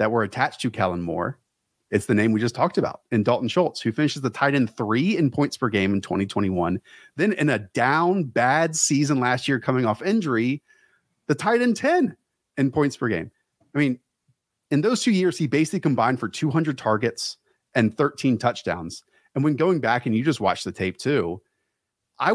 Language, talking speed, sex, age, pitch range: English, 200 wpm, male, 30-49, 110-150 Hz